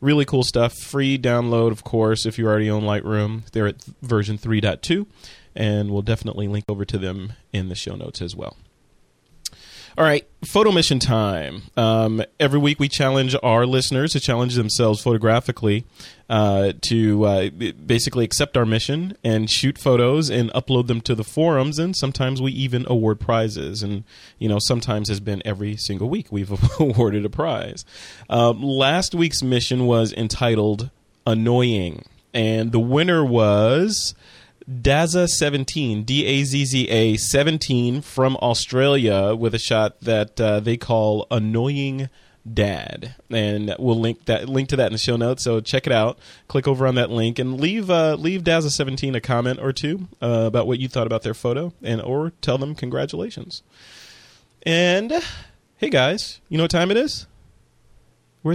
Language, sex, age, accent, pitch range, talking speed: English, male, 30-49, American, 110-140 Hz, 165 wpm